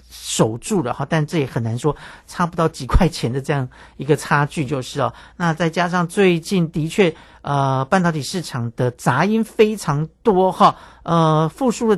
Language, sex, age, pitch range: Chinese, male, 50-69, 140-185 Hz